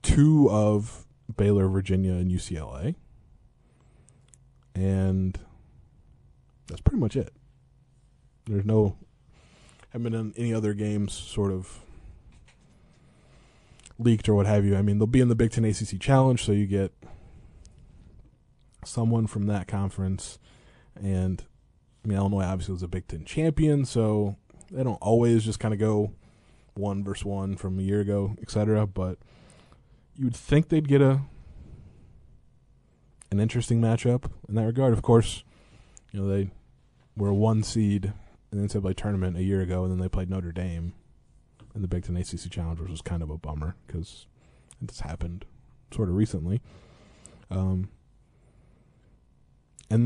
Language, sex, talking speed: English, male, 150 wpm